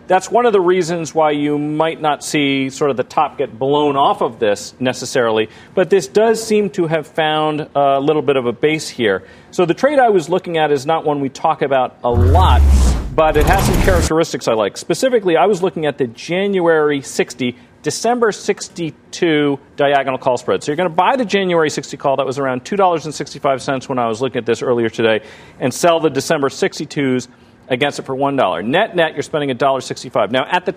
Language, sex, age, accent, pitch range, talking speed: English, male, 40-59, American, 135-175 Hz, 210 wpm